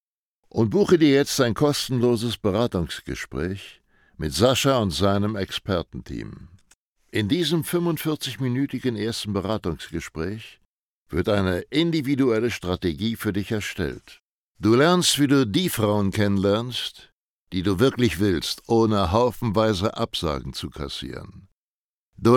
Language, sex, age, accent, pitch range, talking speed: German, male, 60-79, German, 100-130 Hz, 110 wpm